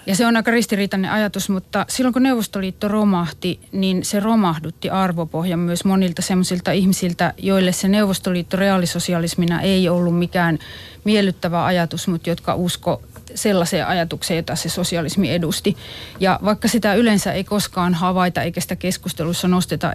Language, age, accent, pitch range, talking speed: Finnish, 30-49, native, 165-190 Hz, 145 wpm